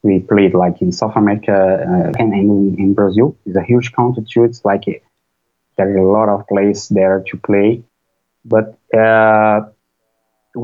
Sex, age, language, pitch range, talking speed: male, 20-39, English, 100-120 Hz, 165 wpm